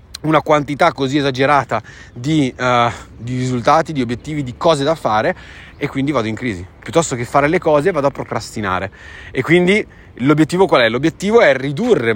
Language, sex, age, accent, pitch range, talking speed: Italian, male, 30-49, native, 130-190 Hz, 170 wpm